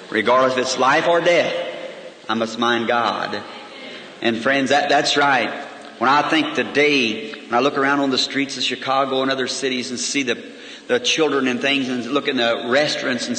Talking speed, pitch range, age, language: 195 wpm, 120-140 Hz, 50-69, English